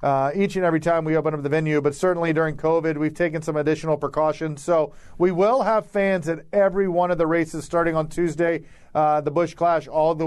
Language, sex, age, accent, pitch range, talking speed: English, male, 40-59, American, 155-175 Hz, 230 wpm